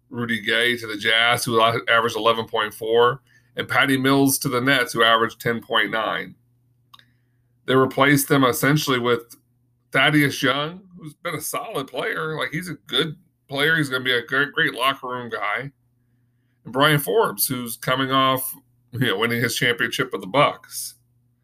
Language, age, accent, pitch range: English, 40-59, American, 120-145 Hz